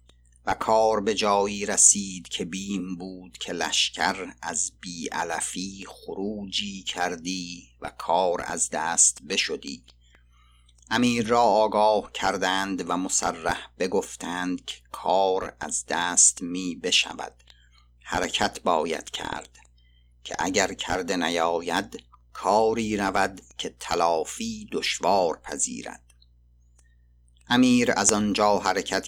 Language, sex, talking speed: Persian, male, 100 wpm